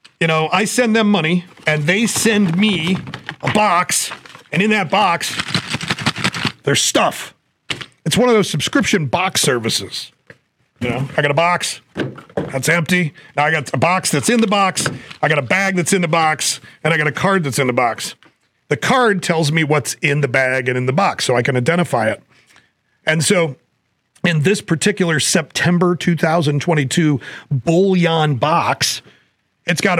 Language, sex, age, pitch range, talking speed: English, male, 40-59, 150-185 Hz, 175 wpm